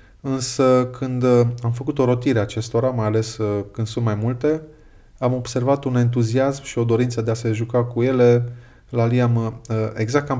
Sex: male